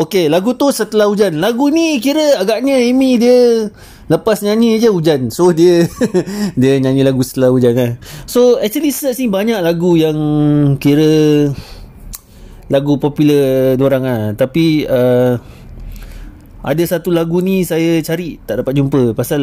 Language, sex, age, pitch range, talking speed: English, male, 30-49, 105-160 Hz, 145 wpm